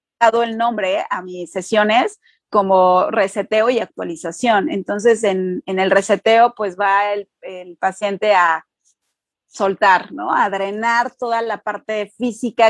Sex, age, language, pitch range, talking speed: female, 30-49, Spanish, 190-230 Hz, 130 wpm